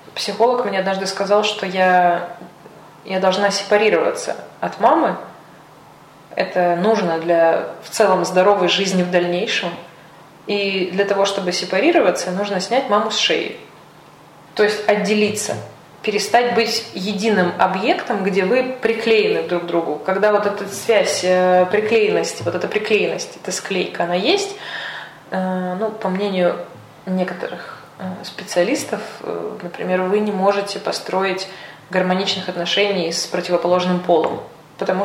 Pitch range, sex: 185-210 Hz, female